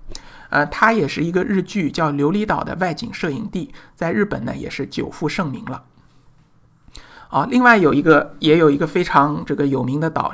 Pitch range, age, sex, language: 140-190 Hz, 60-79, male, Chinese